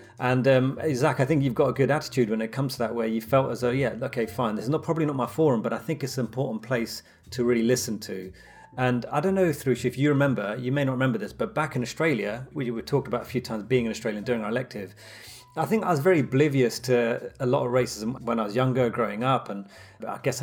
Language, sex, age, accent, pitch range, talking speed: English, male, 30-49, British, 115-145 Hz, 265 wpm